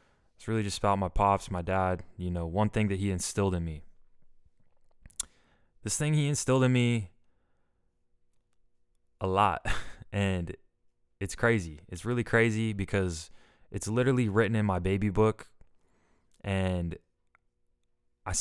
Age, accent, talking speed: 20-39, American, 135 wpm